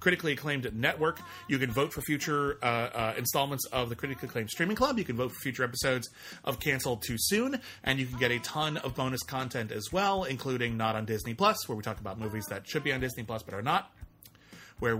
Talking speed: 230 wpm